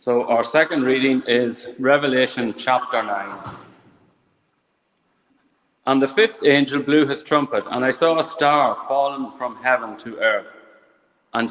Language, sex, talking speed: English, male, 135 wpm